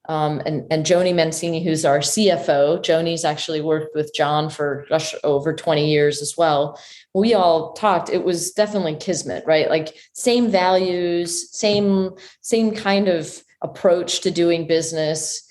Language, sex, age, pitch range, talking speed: English, female, 30-49, 155-185 Hz, 145 wpm